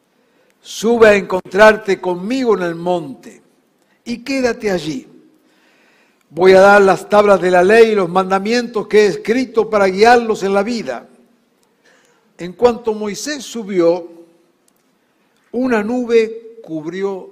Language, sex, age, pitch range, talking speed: Spanish, male, 60-79, 170-230 Hz, 125 wpm